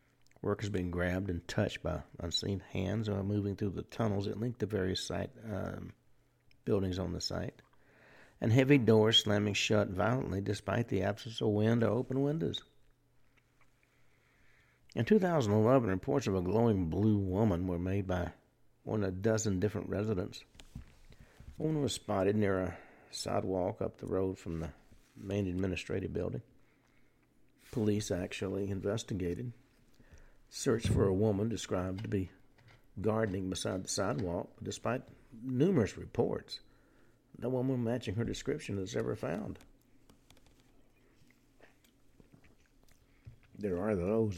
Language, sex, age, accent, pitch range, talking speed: English, male, 60-79, American, 95-115 Hz, 130 wpm